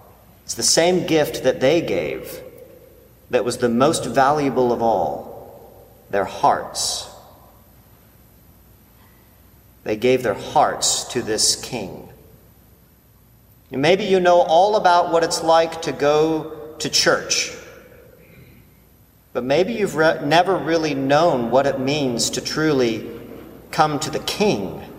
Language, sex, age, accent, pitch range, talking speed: English, male, 40-59, American, 120-170 Hz, 120 wpm